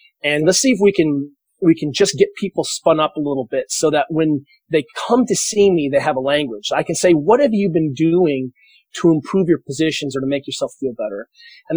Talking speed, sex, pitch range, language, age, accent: 240 wpm, male, 145-190 Hz, English, 30-49, American